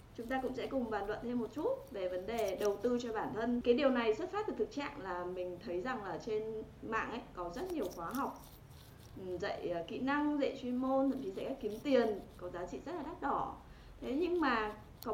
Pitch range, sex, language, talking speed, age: 195-270 Hz, female, Vietnamese, 235 wpm, 20-39